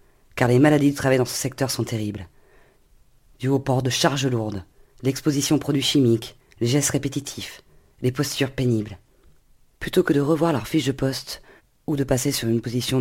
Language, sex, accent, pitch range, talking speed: French, female, French, 115-145 Hz, 185 wpm